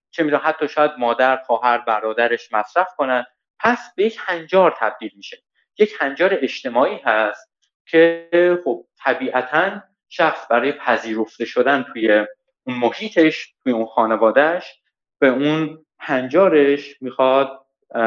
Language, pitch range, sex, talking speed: Persian, 120-170 Hz, male, 120 wpm